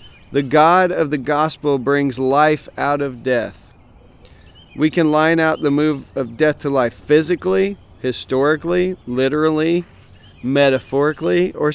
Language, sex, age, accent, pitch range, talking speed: English, male, 40-59, American, 125-150 Hz, 130 wpm